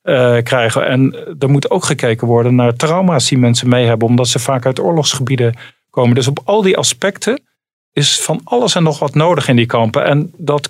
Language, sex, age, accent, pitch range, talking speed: Dutch, male, 40-59, Dutch, 120-150 Hz, 210 wpm